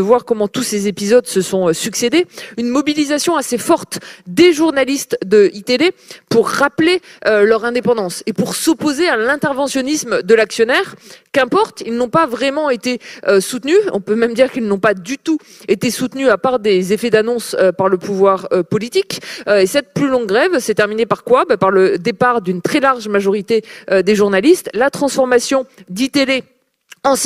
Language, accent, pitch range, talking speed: French, French, 200-265 Hz, 170 wpm